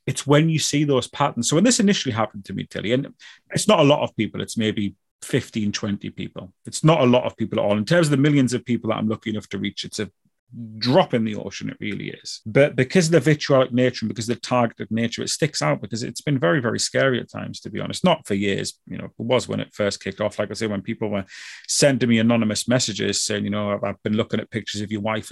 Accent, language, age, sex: British, English, 30-49, male